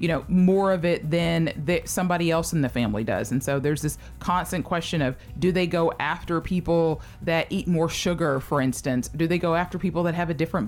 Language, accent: English, American